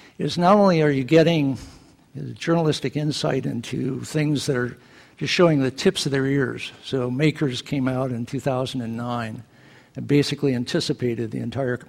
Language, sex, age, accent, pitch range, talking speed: English, male, 60-79, American, 120-145 Hz, 150 wpm